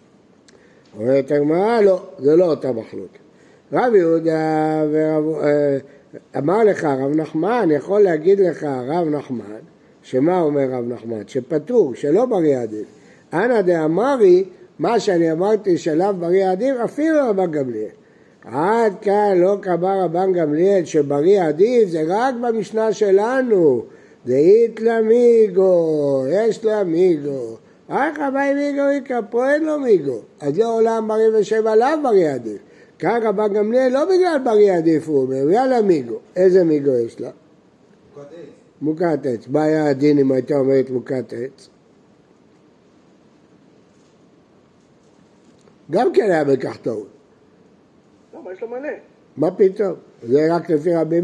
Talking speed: 130 wpm